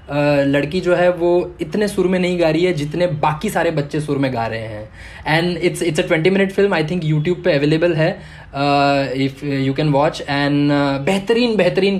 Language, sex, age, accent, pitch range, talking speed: English, male, 20-39, Indian, 150-185 Hz, 175 wpm